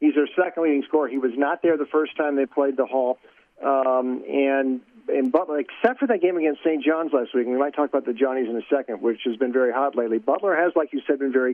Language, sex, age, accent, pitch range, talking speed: English, male, 50-69, American, 130-155 Hz, 265 wpm